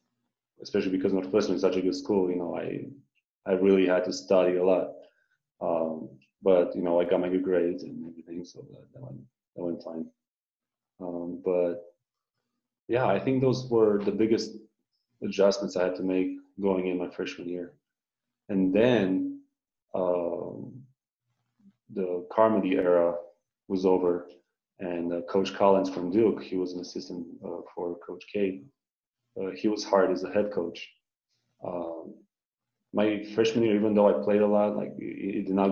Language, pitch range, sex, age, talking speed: English, 90-105 Hz, male, 30-49, 165 wpm